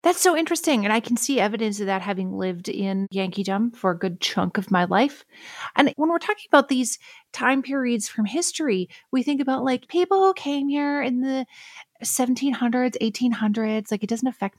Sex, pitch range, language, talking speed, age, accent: female, 210-295 Hz, English, 195 wpm, 30-49, American